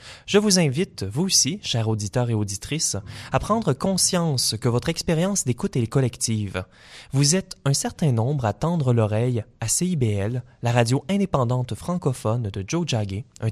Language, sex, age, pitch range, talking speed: French, male, 20-39, 110-145 Hz, 160 wpm